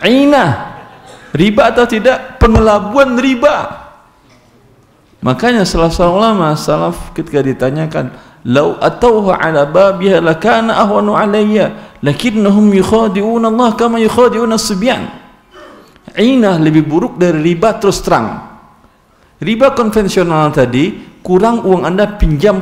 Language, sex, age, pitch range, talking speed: Indonesian, male, 50-69, 145-220 Hz, 105 wpm